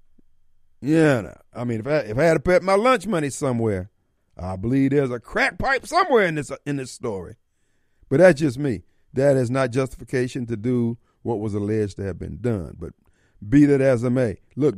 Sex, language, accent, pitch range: male, Japanese, American, 120-195 Hz